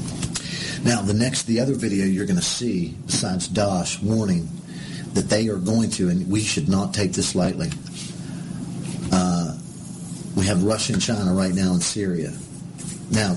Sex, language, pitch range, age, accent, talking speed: male, English, 95-130 Hz, 40-59, American, 160 wpm